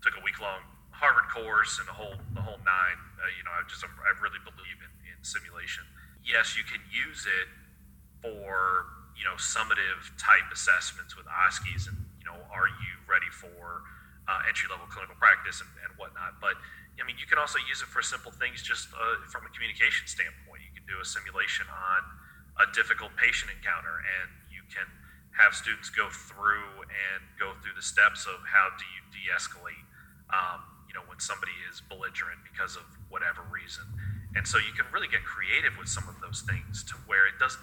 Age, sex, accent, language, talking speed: 30-49, male, American, English, 190 wpm